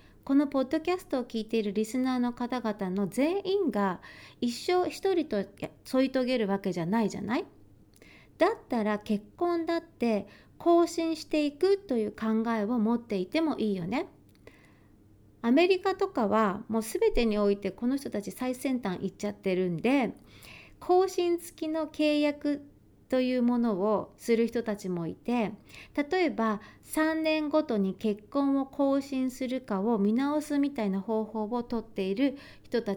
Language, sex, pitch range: Japanese, female, 215-305 Hz